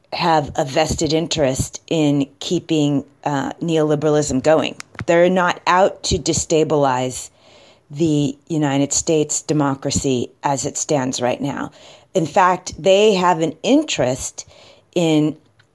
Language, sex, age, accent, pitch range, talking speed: English, female, 30-49, American, 145-185 Hz, 115 wpm